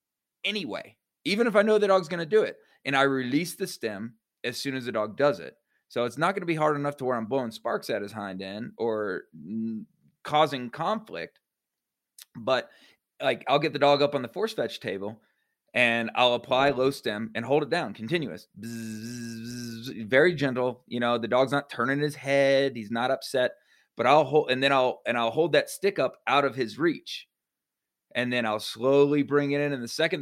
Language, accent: English, American